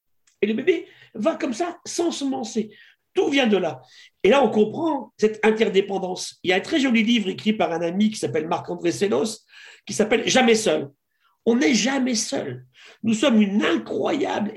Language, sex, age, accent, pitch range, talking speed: French, male, 50-69, French, 185-250 Hz, 200 wpm